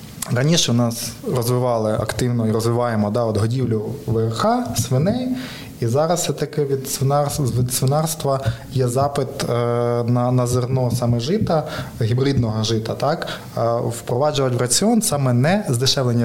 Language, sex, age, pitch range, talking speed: Ukrainian, male, 20-39, 120-150 Hz, 130 wpm